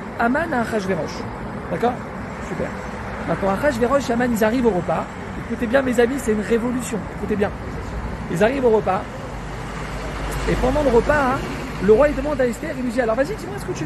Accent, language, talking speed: French, French, 205 wpm